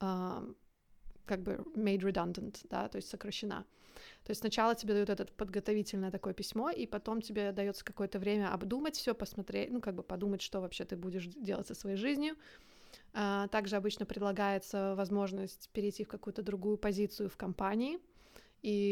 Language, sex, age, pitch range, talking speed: Russian, female, 20-39, 195-215 Hz, 165 wpm